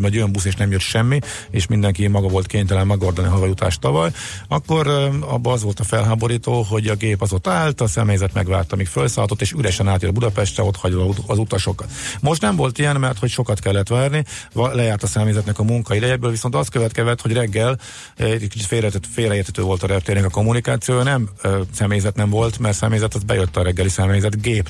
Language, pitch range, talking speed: Hungarian, 100-115 Hz, 200 wpm